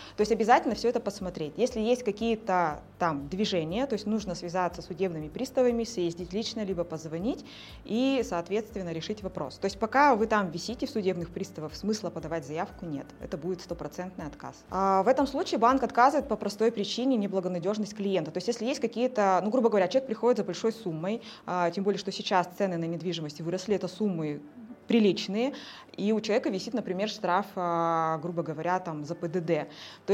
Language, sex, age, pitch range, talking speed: Russian, female, 20-39, 175-225 Hz, 175 wpm